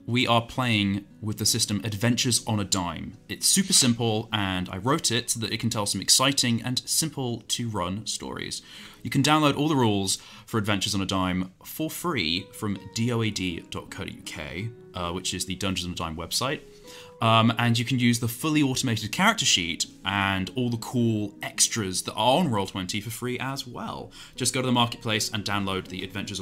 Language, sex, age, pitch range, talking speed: English, male, 20-39, 95-120 Hz, 185 wpm